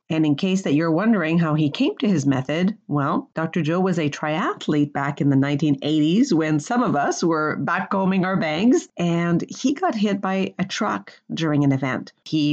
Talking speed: 195 wpm